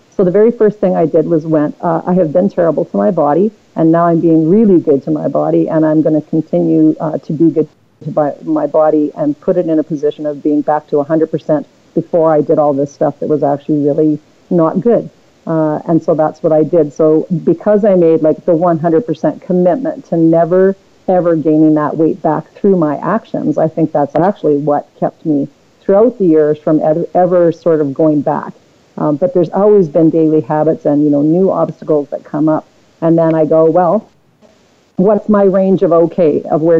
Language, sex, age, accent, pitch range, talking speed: English, female, 50-69, American, 150-175 Hz, 215 wpm